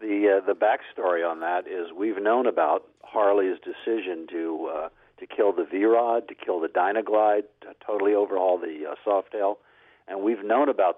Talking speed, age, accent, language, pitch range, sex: 180 wpm, 50-69, American, English, 100-140 Hz, male